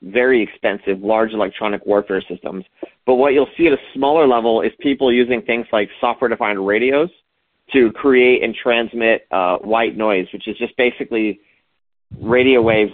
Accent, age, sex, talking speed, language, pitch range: American, 40-59, male, 160 wpm, English, 105-125 Hz